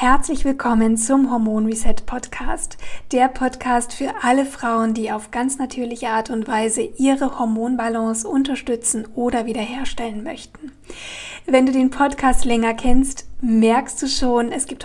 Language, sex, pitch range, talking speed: German, female, 225-255 Hz, 140 wpm